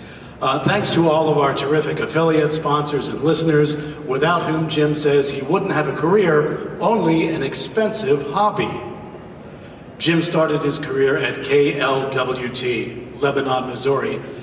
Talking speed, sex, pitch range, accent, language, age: 135 wpm, male, 135-160 Hz, American, English, 50-69